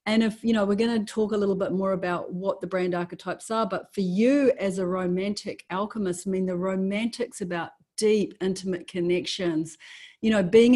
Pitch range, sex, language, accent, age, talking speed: 180-210 Hz, female, English, Australian, 40-59, 200 wpm